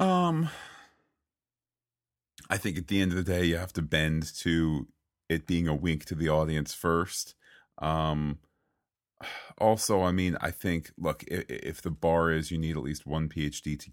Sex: male